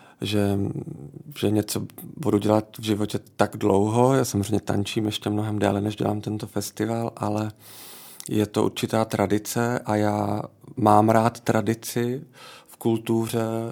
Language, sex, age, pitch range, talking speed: Czech, male, 40-59, 105-115 Hz, 135 wpm